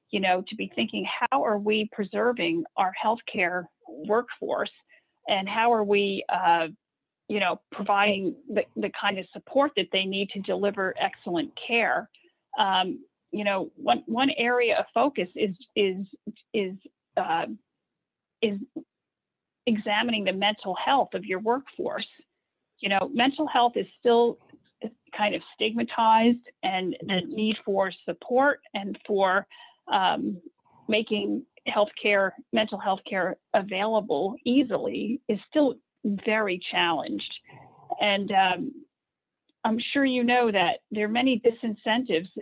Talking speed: 130 wpm